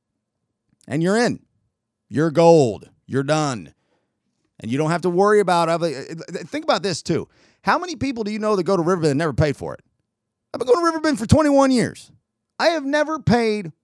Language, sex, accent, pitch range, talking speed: English, male, American, 125-185 Hz, 200 wpm